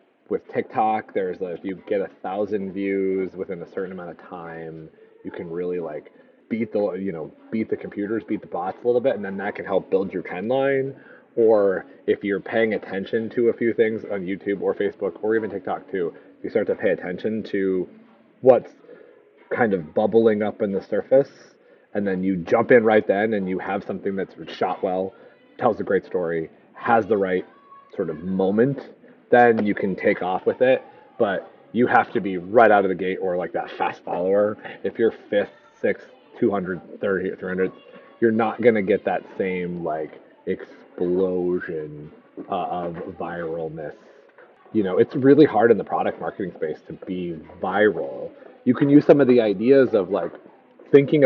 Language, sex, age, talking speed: English, male, 30-49, 185 wpm